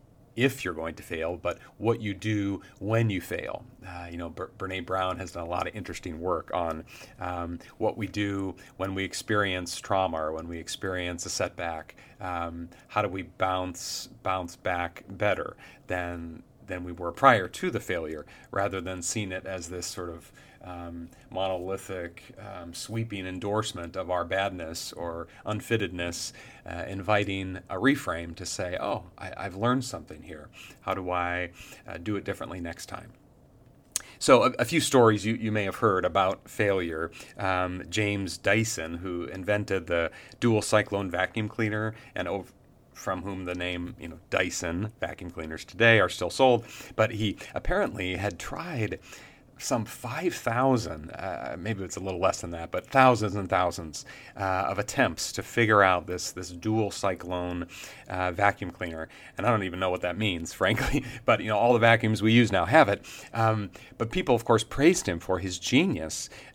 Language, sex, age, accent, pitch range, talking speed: English, male, 40-59, American, 90-110 Hz, 175 wpm